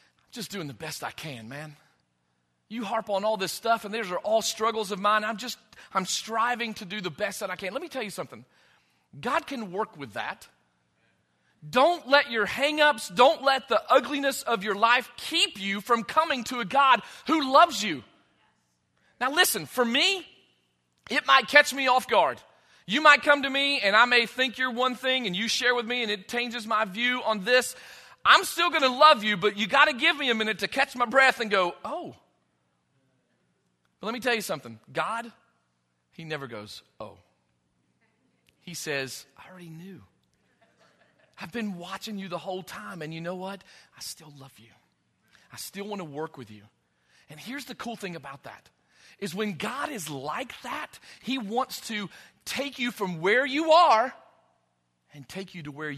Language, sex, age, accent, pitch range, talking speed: Russian, male, 40-59, American, 155-255 Hz, 195 wpm